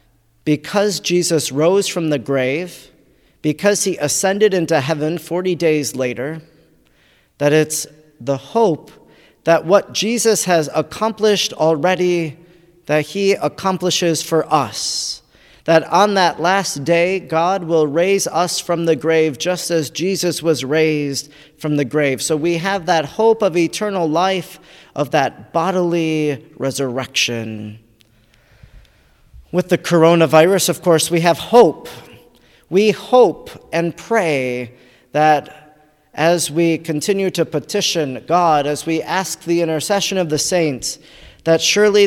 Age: 40-59